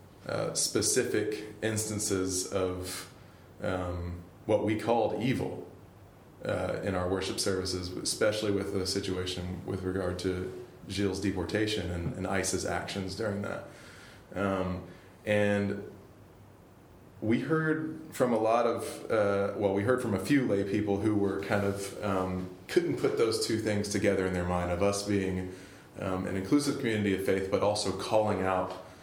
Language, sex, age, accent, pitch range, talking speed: English, male, 20-39, American, 95-105 Hz, 150 wpm